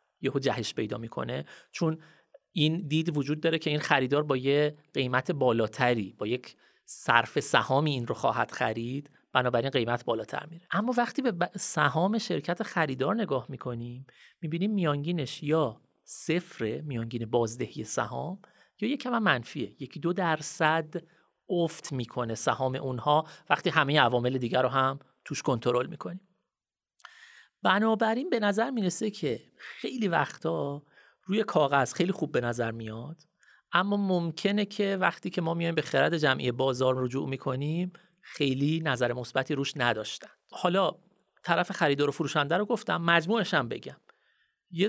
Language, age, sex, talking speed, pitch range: Persian, 30-49, male, 145 wpm, 135-185 Hz